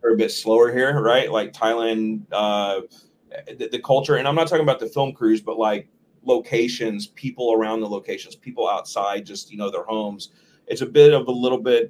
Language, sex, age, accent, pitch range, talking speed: English, male, 30-49, American, 110-130 Hz, 200 wpm